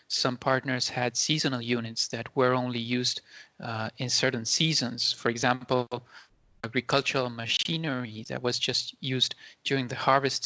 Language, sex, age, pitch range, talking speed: English, male, 30-49, 120-150 Hz, 140 wpm